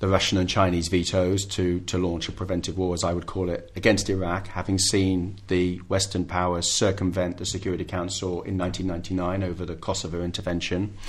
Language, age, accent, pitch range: English, 30-49, British, 90-105 Hz